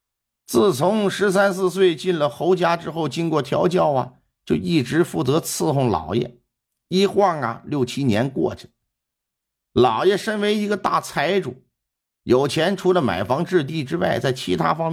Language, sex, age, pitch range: Chinese, male, 50-69, 110-170 Hz